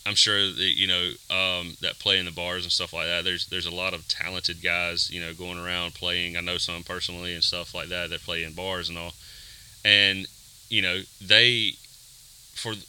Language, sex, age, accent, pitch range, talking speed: English, male, 30-49, American, 90-100 Hz, 215 wpm